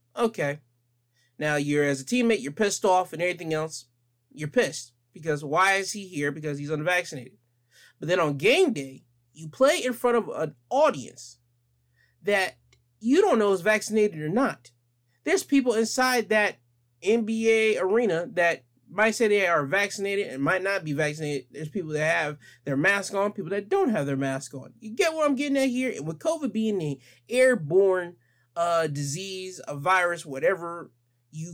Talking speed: 175 wpm